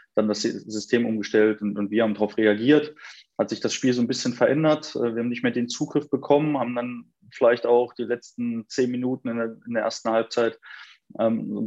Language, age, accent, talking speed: German, 20-39, German, 210 wpm